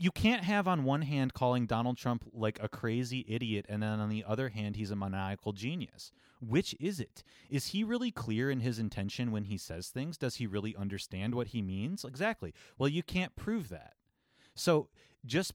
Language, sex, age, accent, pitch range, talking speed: English, male, 30-49, American, 105-140 Hz, 200 wpm